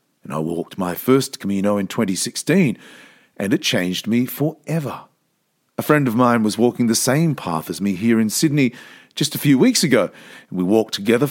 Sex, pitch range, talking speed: male, 105-140 Hz, 185 wpm